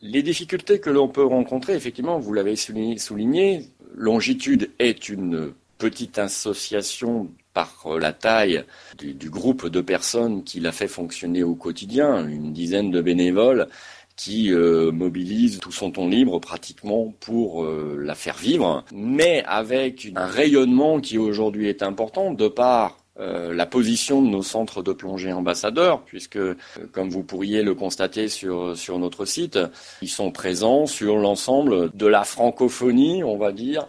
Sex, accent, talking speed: male, French, 155 wpm